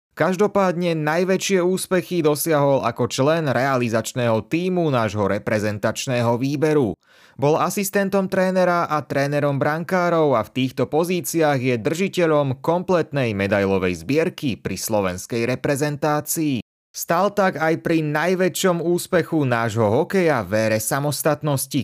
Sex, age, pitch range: male, 30-49, 115-170 Hz